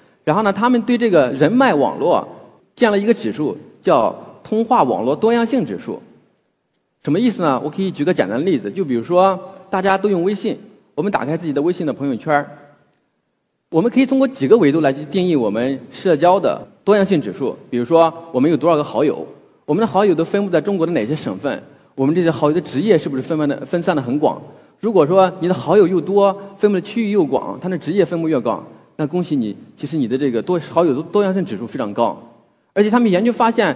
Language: Chinese